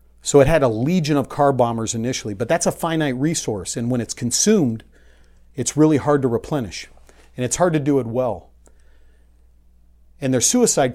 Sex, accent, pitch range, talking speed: male, American, 105-135 Hz, 180 wpm